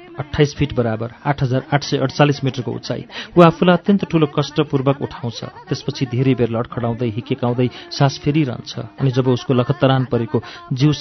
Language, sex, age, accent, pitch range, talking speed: English, male, 40-59, Indian, 125-155 Hz, 120 wpm